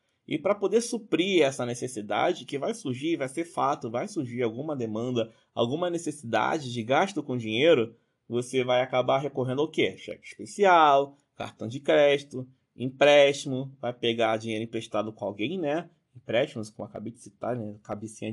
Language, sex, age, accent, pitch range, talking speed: Portuguese, male, 20-39, Brazilian, 125-165 Hz, 160 wpm